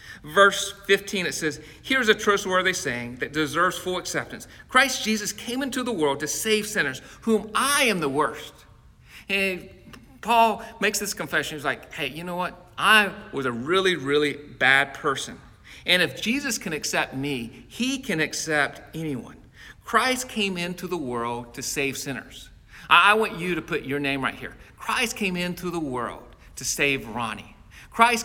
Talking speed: 170 wpm